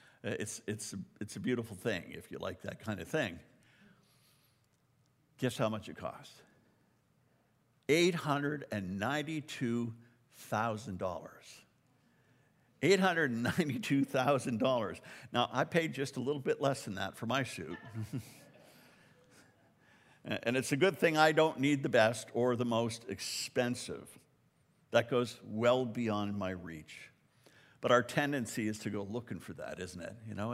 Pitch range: 115-145 Hz